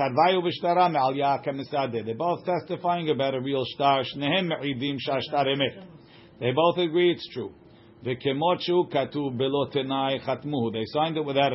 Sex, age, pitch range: male, 50-69, 135-175 Hz